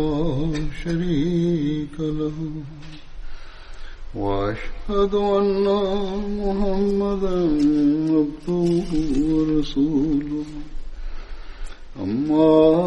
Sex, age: male, 60-79